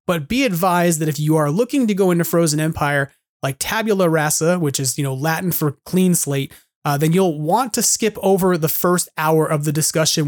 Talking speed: 215 wpm